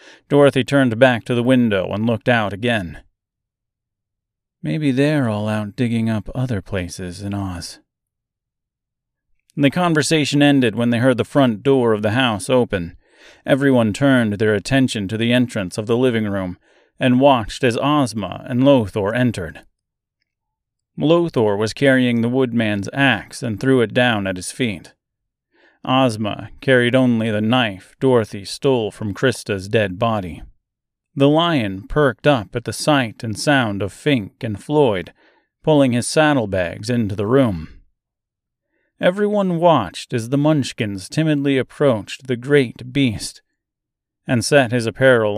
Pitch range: 105-135 Hz